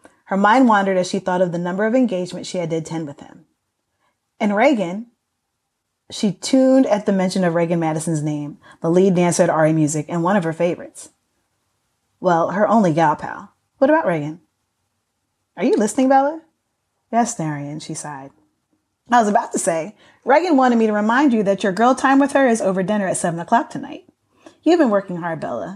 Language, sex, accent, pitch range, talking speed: English, female, American, 170-235 Hz, 195 wpm